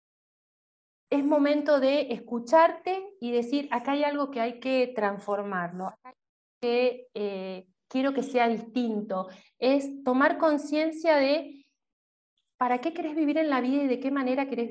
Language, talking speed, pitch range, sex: Spanish, 145 wpm, 220-295 Hz, female